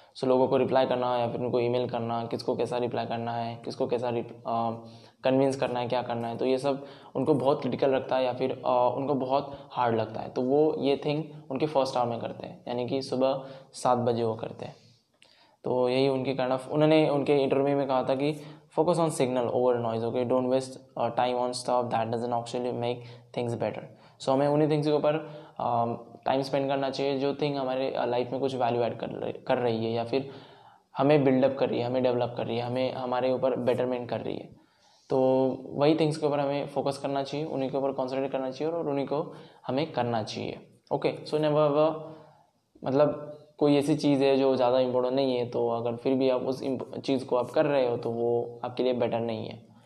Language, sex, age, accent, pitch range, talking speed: Hindi, male, 10-29, native, 120-140 Hz, 225 wpm